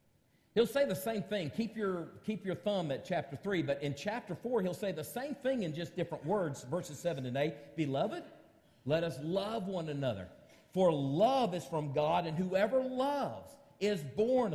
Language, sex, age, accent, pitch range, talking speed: English, male, 50-69, American, 135-210 Hz, 185 wpm